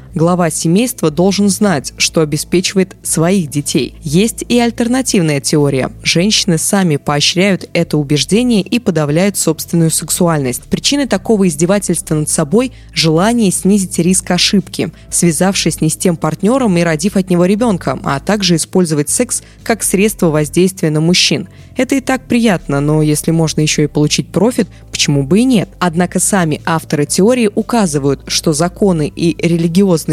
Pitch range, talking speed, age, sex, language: 155-195 Hz, 145 wpm, 20-39, female, Russian